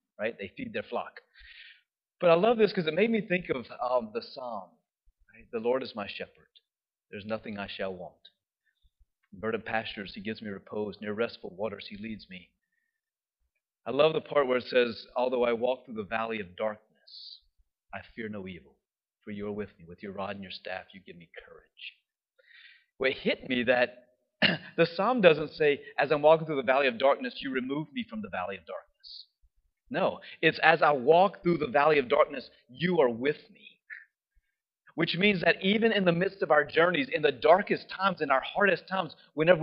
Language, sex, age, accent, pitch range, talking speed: English, male, 40-59, American, 120-205 Hz, 205 wpm